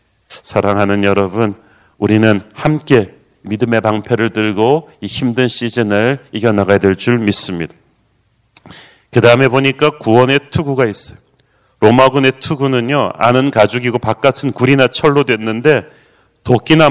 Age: 40-59